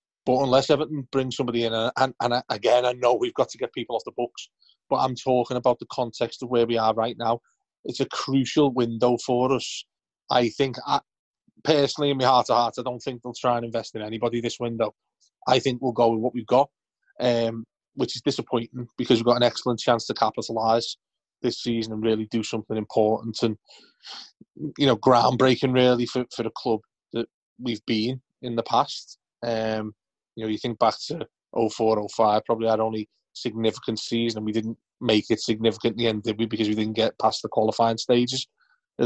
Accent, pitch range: British, 115-130 Hz